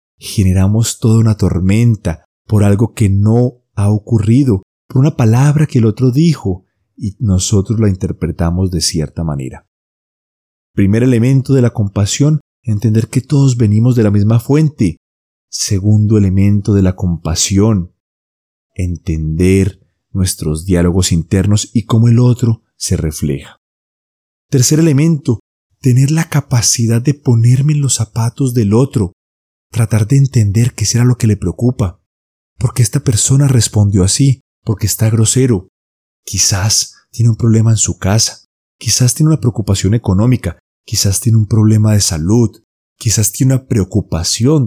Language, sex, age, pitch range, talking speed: Spanish, male, 30-49, 95-125 Hz, 140 wpm